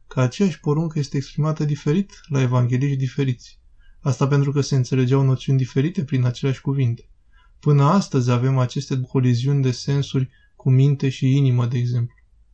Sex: male